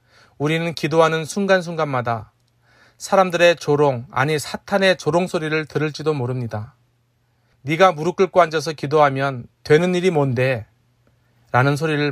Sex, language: male, Korean